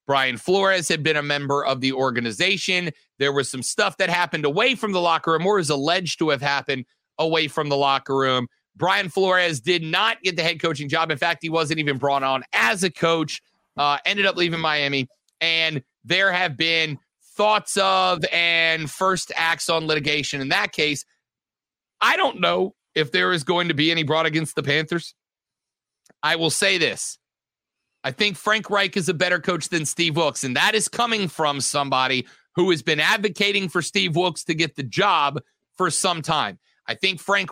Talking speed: 195 wpm